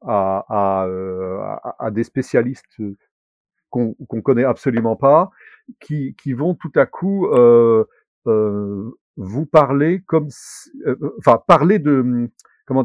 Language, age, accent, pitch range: French, 50-69, French, 120-160 Hz